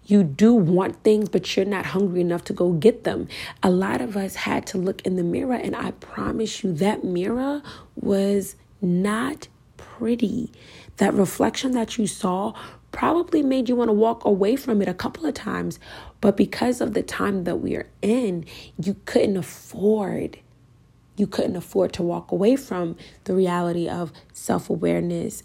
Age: 30-49